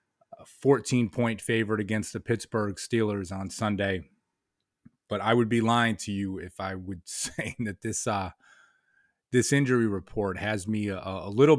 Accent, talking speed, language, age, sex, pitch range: American, 160 wpm, English, 30-49, male, 95-115 Hz